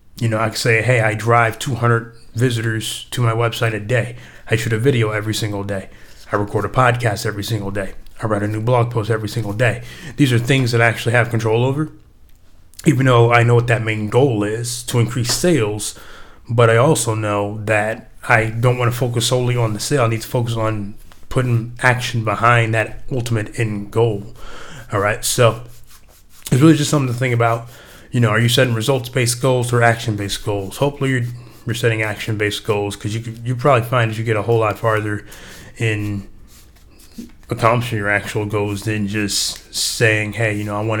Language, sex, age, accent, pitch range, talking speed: English, male, 30-49, American, 105-120 Hz, 200 wpm